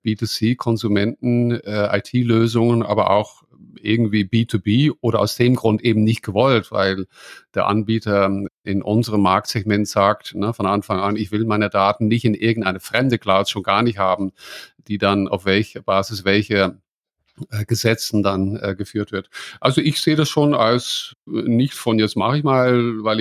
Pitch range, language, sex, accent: 105-125 Hz, English, male, German